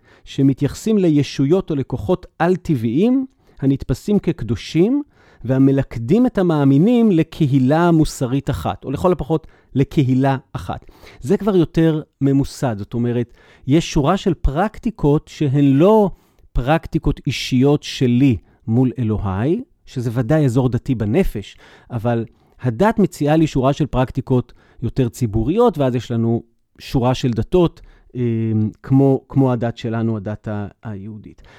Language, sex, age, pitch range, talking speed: Hebrew, male, 40-59, 120-160 Hz, 115 wpm